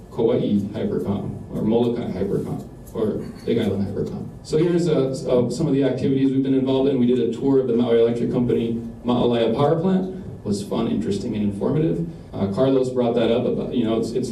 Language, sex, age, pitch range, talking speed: English, male, 40-59, 110-125 Hz, 205 wpm